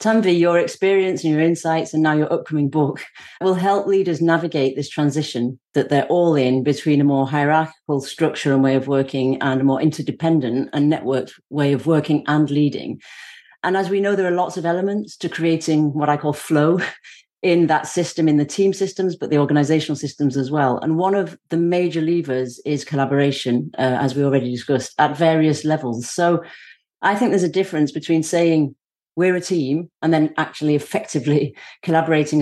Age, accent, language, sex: 40-59, British, English, female